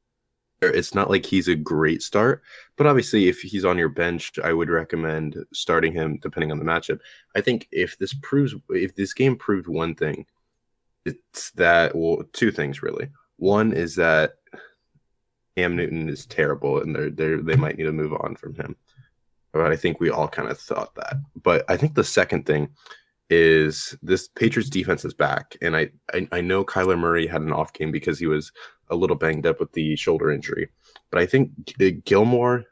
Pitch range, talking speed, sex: 80-100 Hz, 195 wpm, male